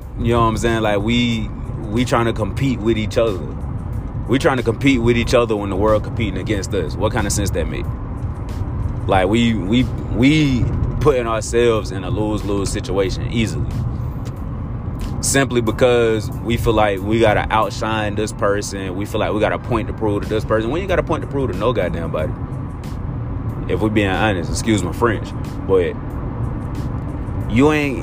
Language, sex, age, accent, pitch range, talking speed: English, male, 20-39, American, 105-120 Hz, 190 wpm